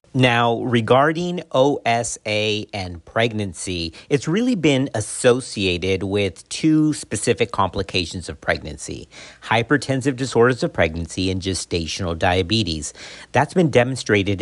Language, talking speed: English, 105 wpm